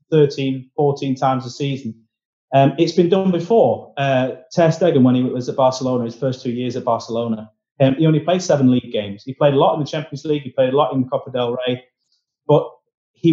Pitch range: 120-155 Hz